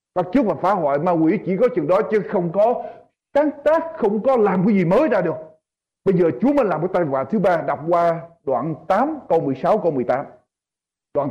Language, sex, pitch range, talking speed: Vietnamese, male, 190-265 Hz, 230 wpm